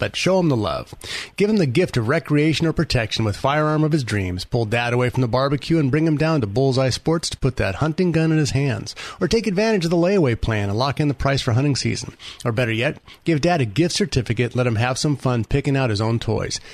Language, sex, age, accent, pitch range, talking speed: English, male, 30-49, American, 115-155 Hz, 260 wpm